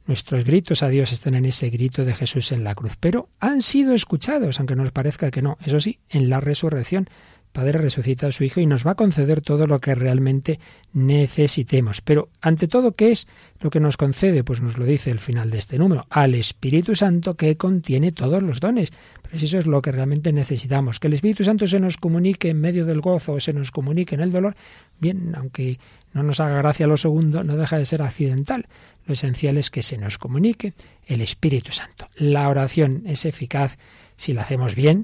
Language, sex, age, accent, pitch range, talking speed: Spanish, male, 40-59, Spanish, 130-160 Hz, 215 wpm